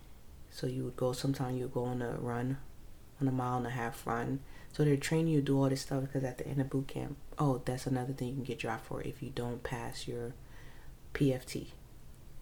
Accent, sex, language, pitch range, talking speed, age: American, female, English, 120-135 Hz, 230 wpm, 30-49